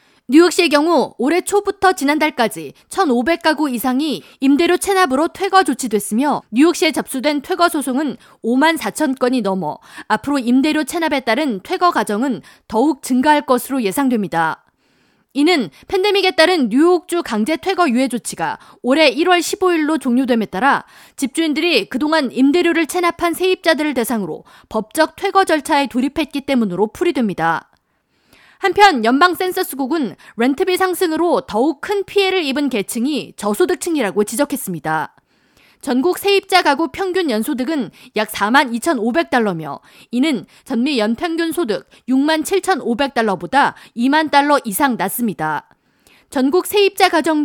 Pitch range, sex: 245-340 Hz, female